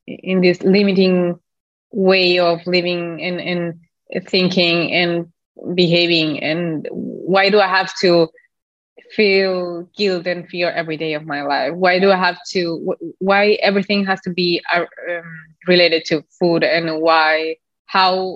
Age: 20-39